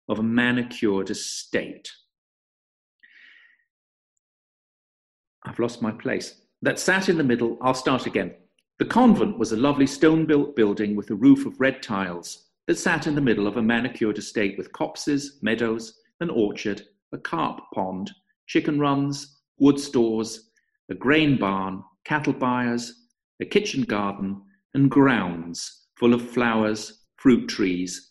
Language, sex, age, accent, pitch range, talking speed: English, male, 50-69, British, 105-145 Hz, 140 wpm